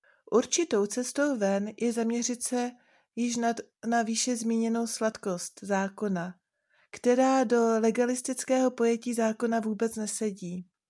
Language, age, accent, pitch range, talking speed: Czech, 30-49, native, 205-245 Hz, 105 wpm